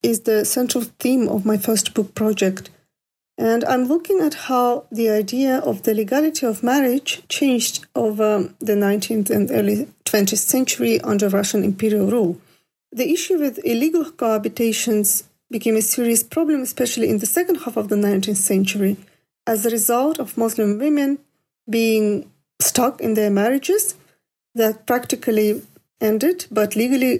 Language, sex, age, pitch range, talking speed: English, female, 40-59, 210-255 Hz, 150 wpm